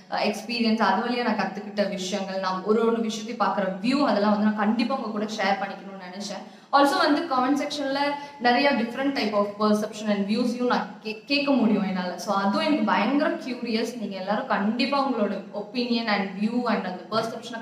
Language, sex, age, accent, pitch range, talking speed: Tamil, female, 20-39, native, 200-265 Hz, 170 wpm